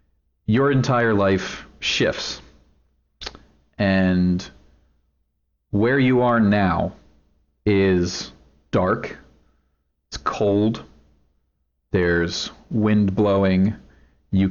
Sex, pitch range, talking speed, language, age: male, 75-100 Hz, 70 wpm, English, 40-59